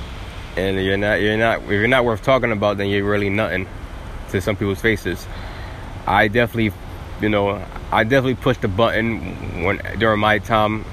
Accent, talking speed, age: American, 175 wpm, 20-39